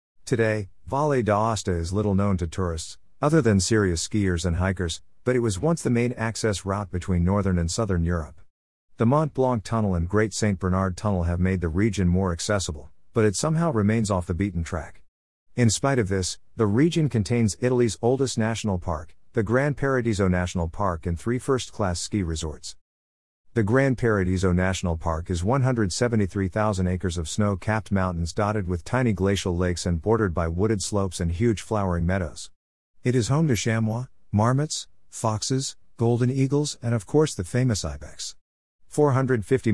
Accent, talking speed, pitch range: American, 170 wpm, 90-115 Hz